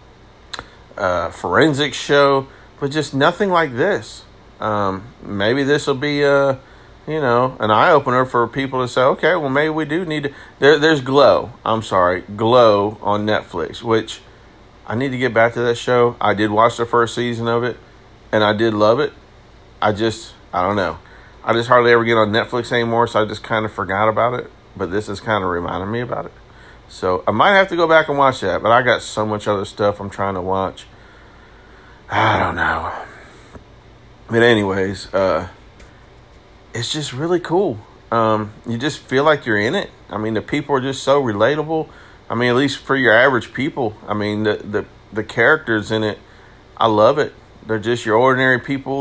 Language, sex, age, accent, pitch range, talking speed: English, male, 40-59, American, 105-135 Hz, 195 wpm